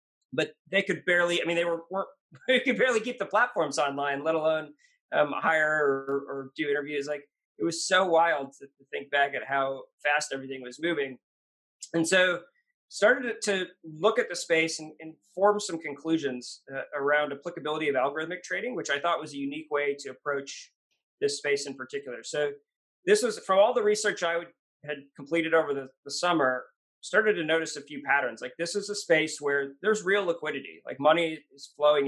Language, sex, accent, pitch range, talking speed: English, male, American, 140-175 Hz, 195 wpm